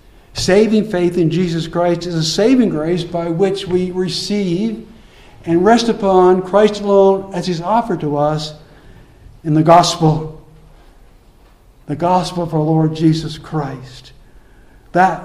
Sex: male